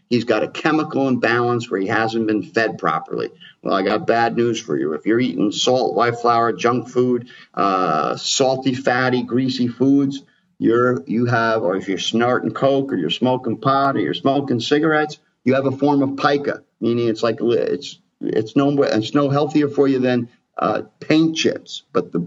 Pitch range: 115-140 Hz